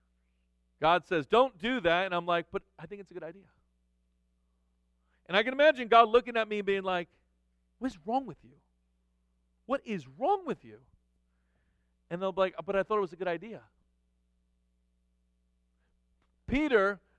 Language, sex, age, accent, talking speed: English, male, 40-59, American, 170 wpm